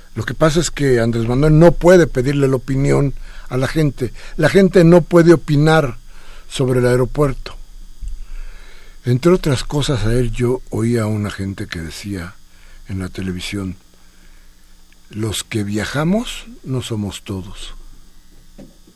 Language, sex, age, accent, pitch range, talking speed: Spanish, male, 60-79, Mexican, 100-140 Hz, 140 wpm